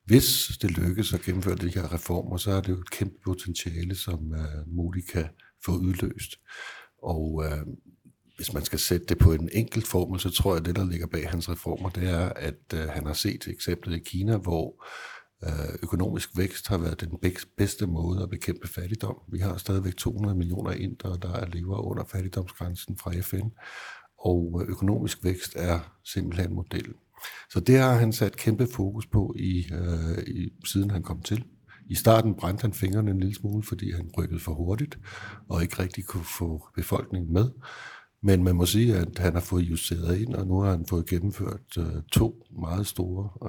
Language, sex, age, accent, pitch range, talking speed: Danish, male, 60-79, native, 85-100 Hz, 180 wpm